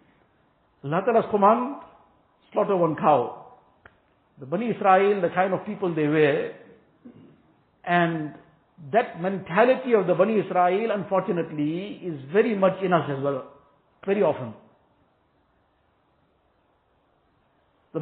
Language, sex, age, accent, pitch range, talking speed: English, male, 60-79, Indian, 165-230 Hz, 100 wpm